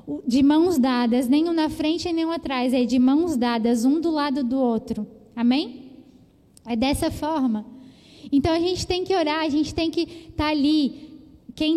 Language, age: Portuguese, 10-29